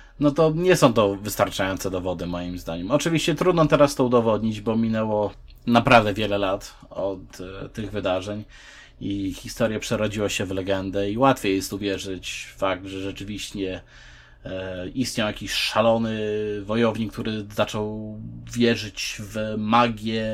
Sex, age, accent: male, 30-49, native